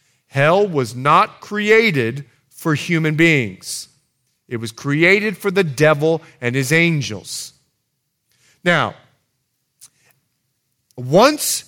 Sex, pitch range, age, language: male, 125-175 Hz, 40-59, English